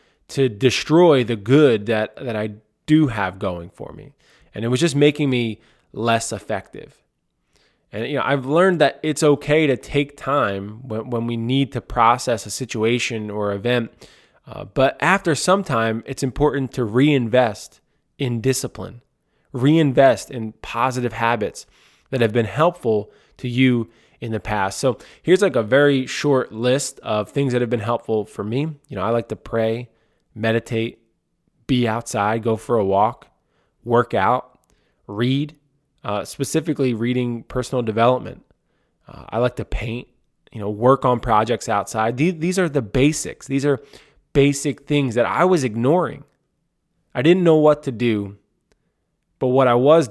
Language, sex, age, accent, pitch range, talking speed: English, male, 20-39, American, 115-145 Hz, 160 wpm